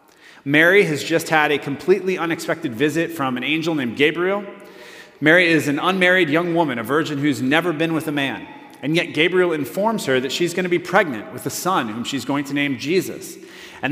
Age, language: 30-49, English